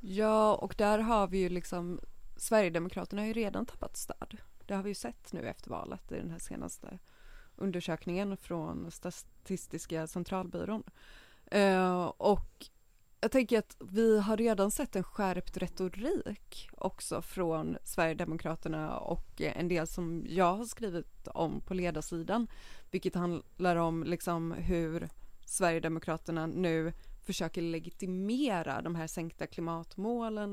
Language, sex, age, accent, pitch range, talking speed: English, female, 20-39, Swedish, 170-210 Hz, 130 wpm